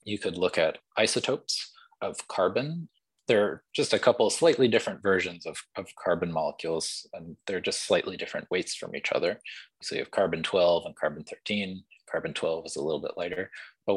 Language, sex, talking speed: English, male, 175 wpm